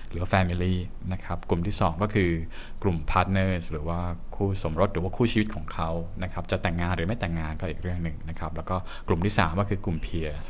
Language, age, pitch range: Thai, 20-39, 85-100 Hz